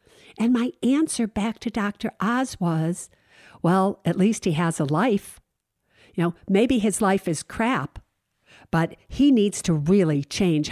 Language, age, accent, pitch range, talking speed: English, 50-69, American, 160-205 Hz, 155 wpm